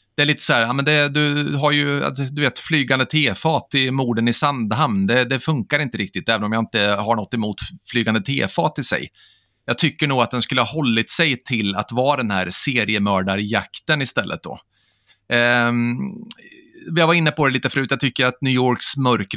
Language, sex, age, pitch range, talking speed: Swedish, male, 30-49, 110-135 Hz, 205 wpm